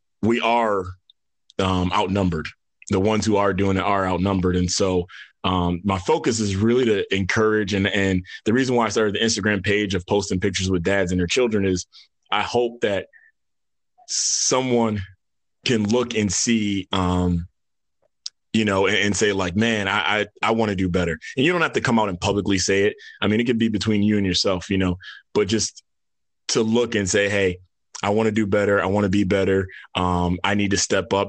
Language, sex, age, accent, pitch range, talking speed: English, male, 20-39, American, 95-110 Hz, 205 wpm